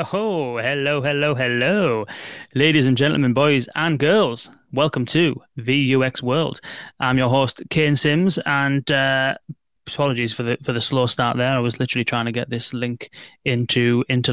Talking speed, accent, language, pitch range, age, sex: 165 wpm, British, English, 125-150 Hz, 20-39, male